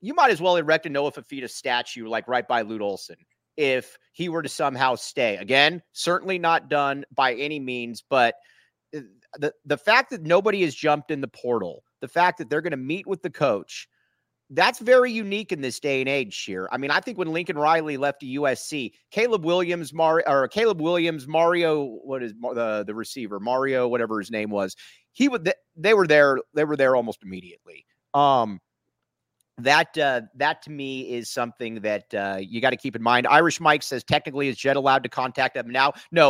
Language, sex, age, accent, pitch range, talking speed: English, male, 30-49, American, 125-175 Hz, 200 wpm